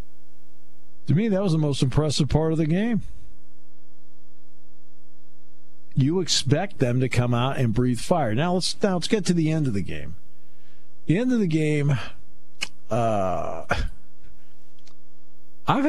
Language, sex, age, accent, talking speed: English, male, 50-69, American, 145 wpm